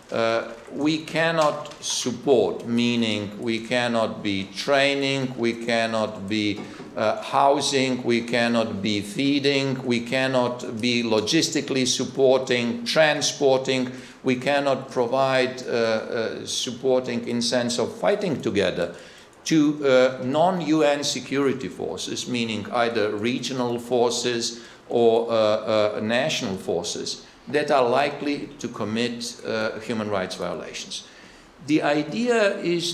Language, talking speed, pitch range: English, 110 wpm, 115-140 Hz